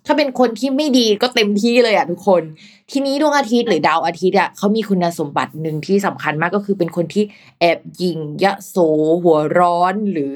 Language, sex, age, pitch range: Thai, female, 20-39, 175-230 Hz